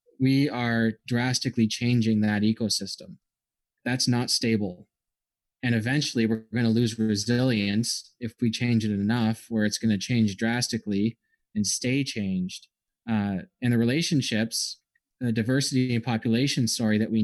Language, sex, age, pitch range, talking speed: English, male, 20-39, 105-120 Hz, 145 wpm